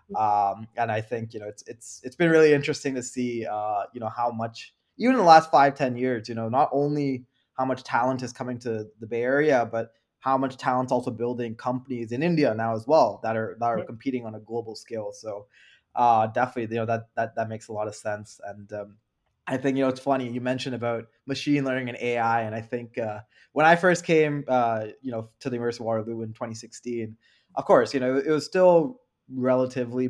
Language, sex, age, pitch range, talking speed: English, male, 20-39, 115-135 Hz, 225 wpm